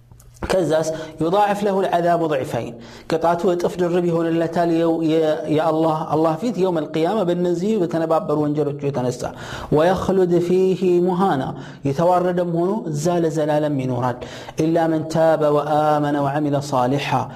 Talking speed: 120 wpm